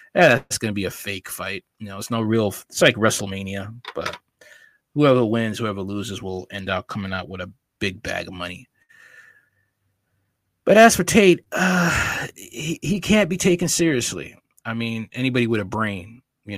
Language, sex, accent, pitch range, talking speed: English, male, American, 100-125 Hz, 180 wpm